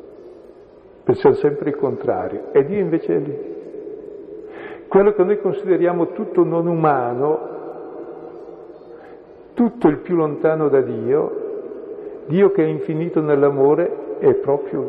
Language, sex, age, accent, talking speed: Italian, male, 50-69, native, 115 wpm